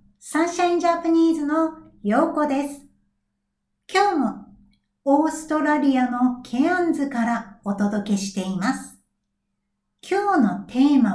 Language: Japanese